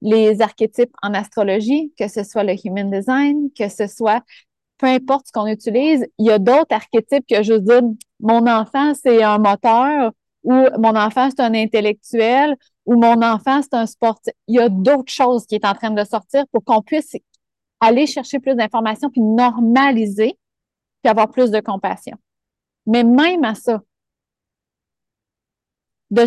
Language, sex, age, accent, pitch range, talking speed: French, female, 30-49, Canadian, 215-260 Hz, 165 wpm